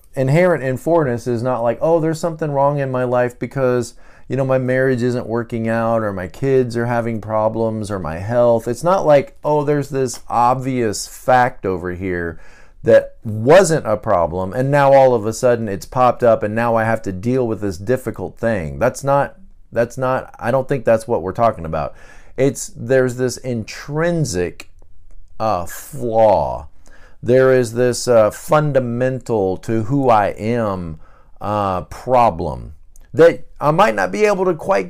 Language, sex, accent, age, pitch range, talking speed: English, male, American, 40-59, 110-150 Hz, 170 wpm